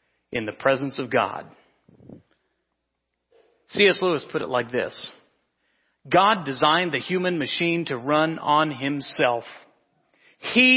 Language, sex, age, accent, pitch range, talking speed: English, male, 40-59, American, 145-225 Hz, 115 wpm